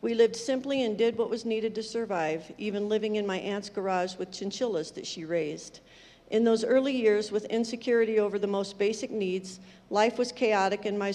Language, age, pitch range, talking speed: English, 50-69, 195-225 Hz, 200 wpm